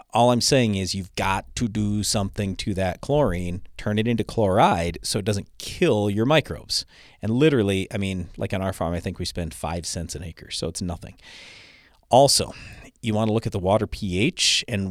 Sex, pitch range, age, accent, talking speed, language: male, 90-110 Hz, 40-59, American, 205 wpm, English